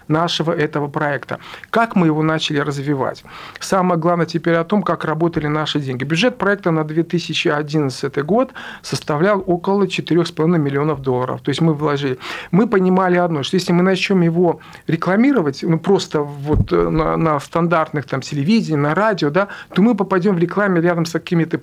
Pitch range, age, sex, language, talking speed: 155-190 Hz, 40-59, male, Russian, 160 wpm